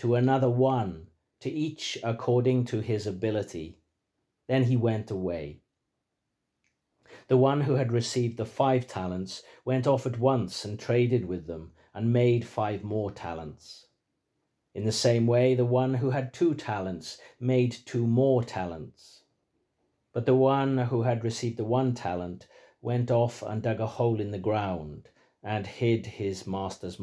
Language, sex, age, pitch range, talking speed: English, male, 50-69, 100-125 Hz, 155 wpm